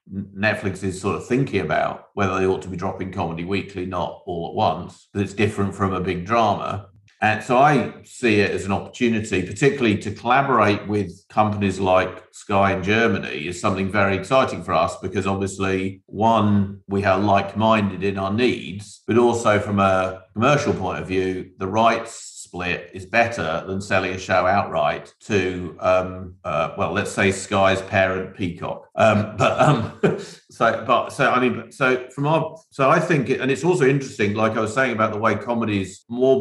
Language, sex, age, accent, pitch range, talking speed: English, male, 50-69, British, 95-110 Hz, 185 wpm